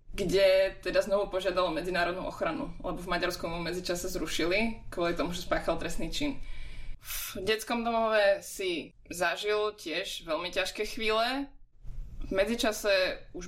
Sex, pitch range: female, 175-215 Hz